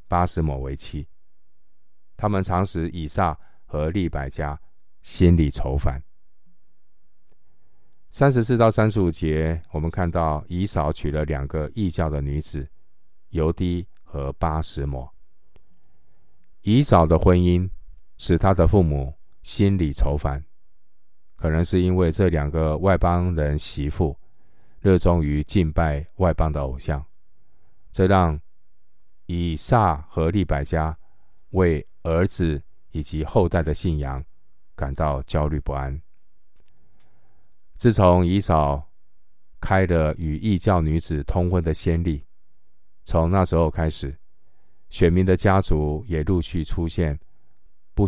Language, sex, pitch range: Chinese, male, 75-90 Hz